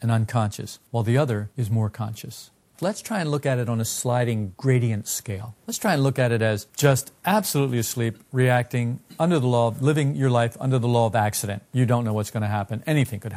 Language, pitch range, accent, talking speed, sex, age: English, 115-155 Hz, American, 225 wpm, male, 50-69